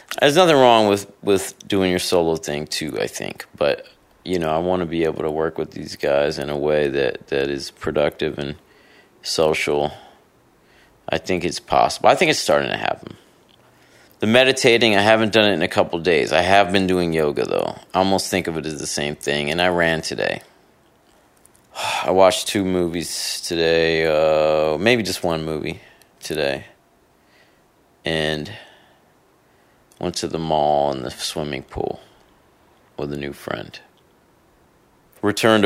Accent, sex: American, male